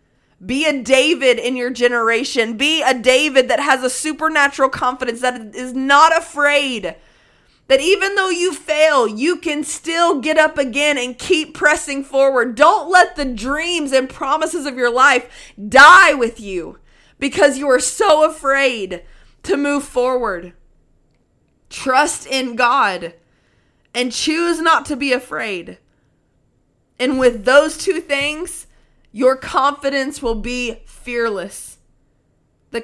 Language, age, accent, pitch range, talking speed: English, 20-39, American, 210-285 Hz, 135 wpm